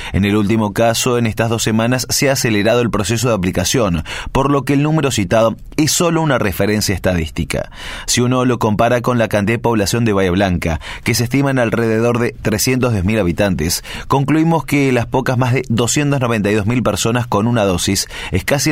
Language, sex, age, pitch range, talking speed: Spanish, male, 30-49, 105-135 Hz, 190 wpm